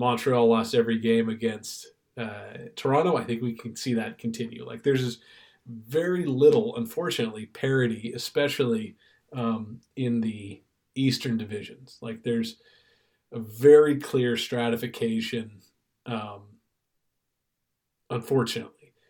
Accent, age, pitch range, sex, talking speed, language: American, 40-59, 115-130 Hz, male, 105 wpm, English